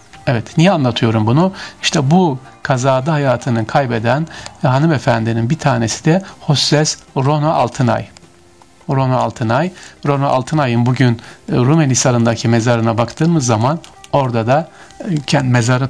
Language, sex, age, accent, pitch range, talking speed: Turkish, male, 50-69, native, 120-155 Hz, 105 wpm